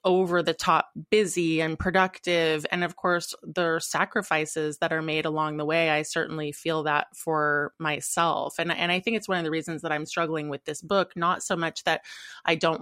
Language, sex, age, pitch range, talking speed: English, female, 20-39, 155-180 Hz, 210 wpm